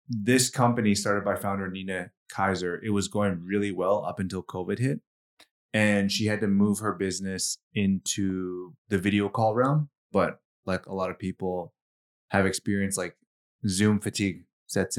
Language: English